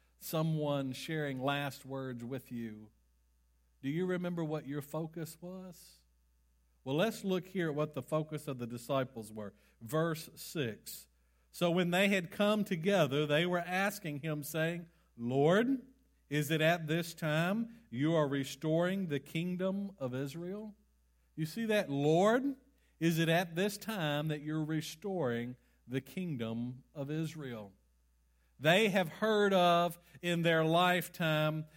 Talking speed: 140 wpm